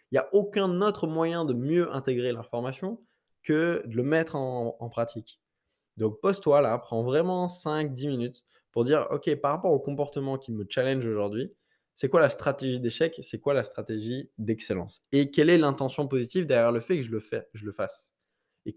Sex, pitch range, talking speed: male, 120-155 Hz, 200 wpm